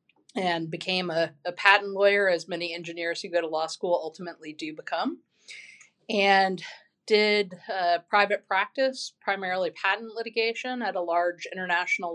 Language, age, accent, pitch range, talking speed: English, 30-49, American, 175-215 Hz, 145 wpm